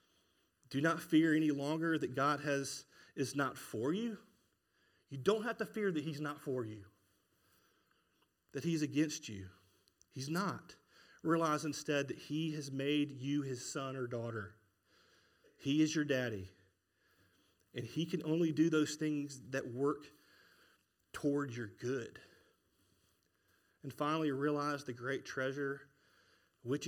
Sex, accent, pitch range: male, American, 115-155 Hz